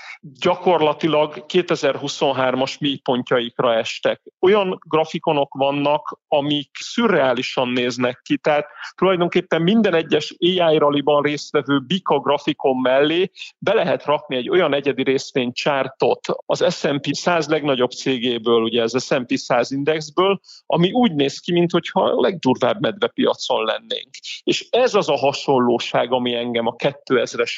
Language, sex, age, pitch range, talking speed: Hungarian, male, 40-59, 135-175 Hz, 125 wpm